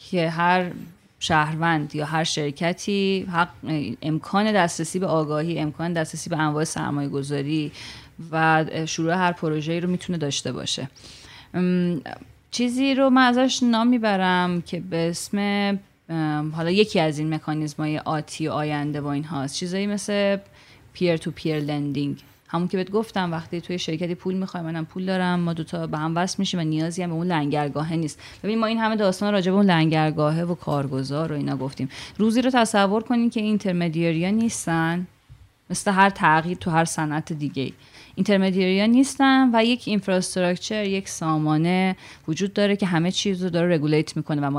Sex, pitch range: female, 155-195 Hz